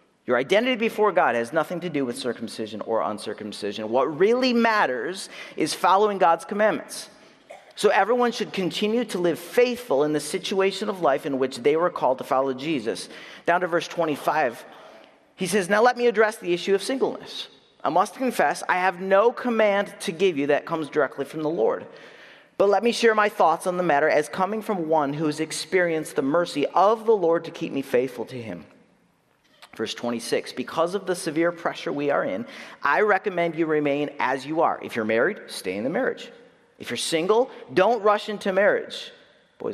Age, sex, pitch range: 40-59, male, 155-215 Hz